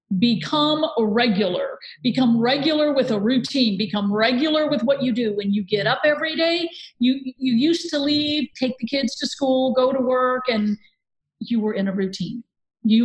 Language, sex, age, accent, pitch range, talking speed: English, female, 50-69, American, 205-275 Hz, 185 wpm